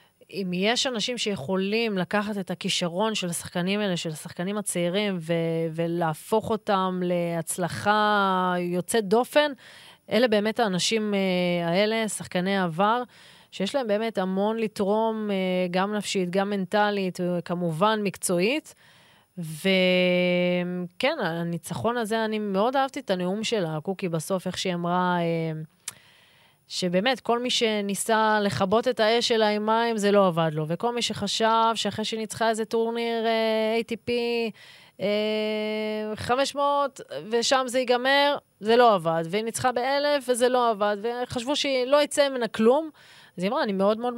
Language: Hebrew